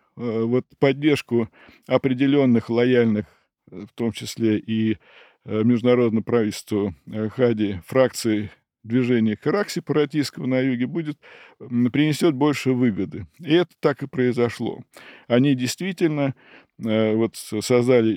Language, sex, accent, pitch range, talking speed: Russian, male, native, 110-135 Hz, 85 wpm